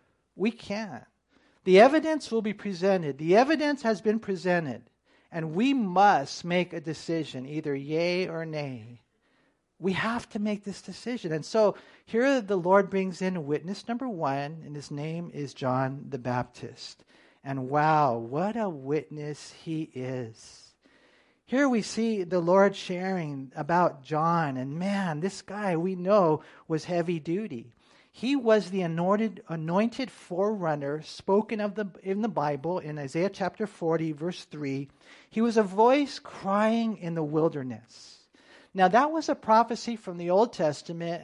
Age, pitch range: 50-69, 155-220 Hz